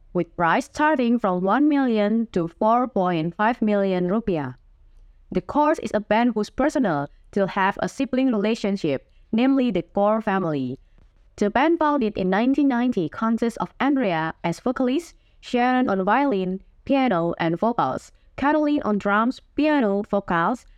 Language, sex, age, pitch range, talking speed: Indonesian, female, 20-39, 170-250 Hz, 135 wpm